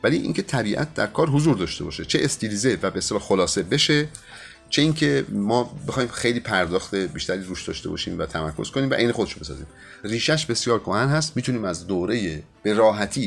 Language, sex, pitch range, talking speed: Persian, male, 80-115 Hz, 190 wpm